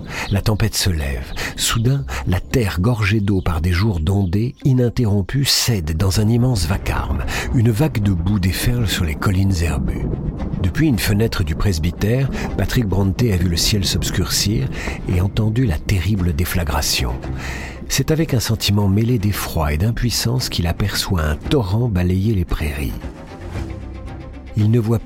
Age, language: 50-69, French